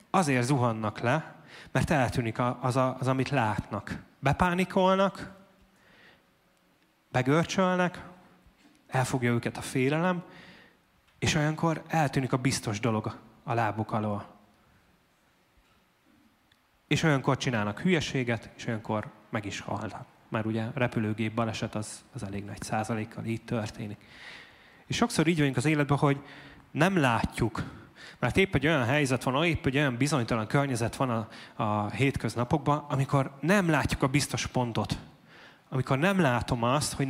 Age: 30-49